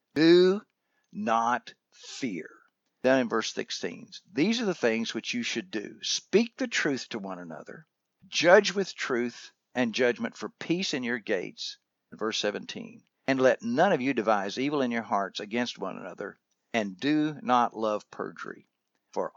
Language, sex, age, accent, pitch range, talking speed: English, male, 60-79, American, 110-155 Hz, 160 wpm